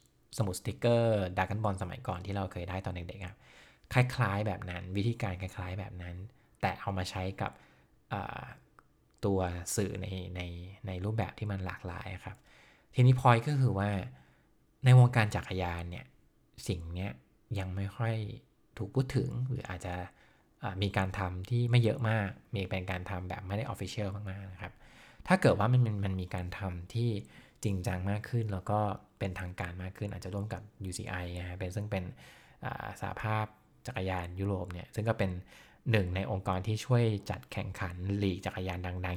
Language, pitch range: English, 90-110 Hz